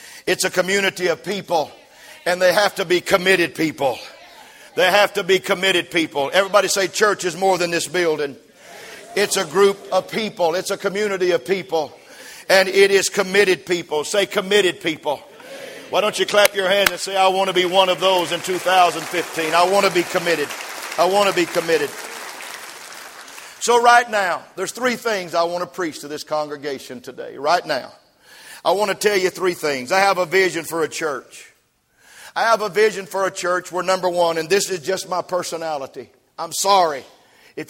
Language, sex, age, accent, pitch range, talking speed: English, male, 50-69, American, 175-205 Hz, 190 wpm